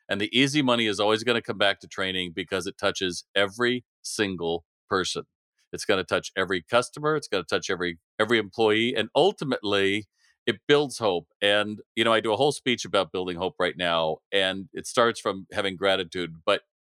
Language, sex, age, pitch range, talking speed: English, male, 40-59, 95-125 Hz, 200 wpm